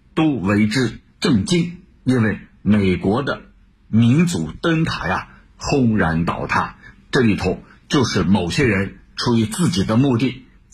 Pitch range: 100-165 Hz